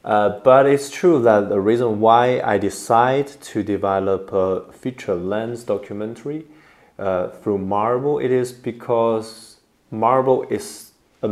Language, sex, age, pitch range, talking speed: English, male, 30-49, 95-115 Hz, 135 wpm